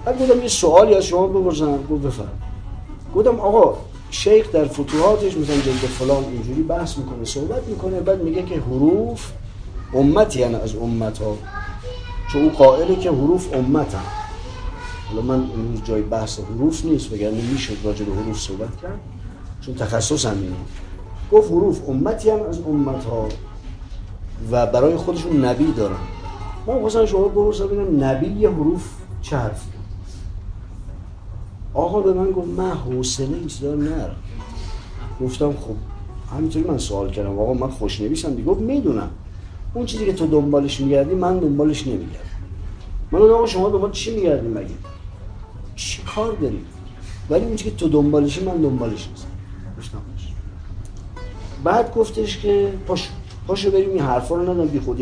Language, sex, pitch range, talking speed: Persian, male, 100-155 Hz, 130 wpm